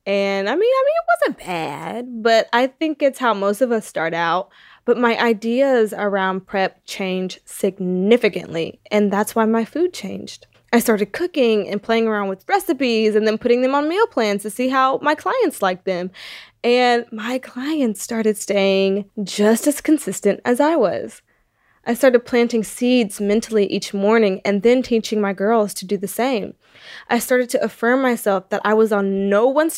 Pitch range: 205-255 Hz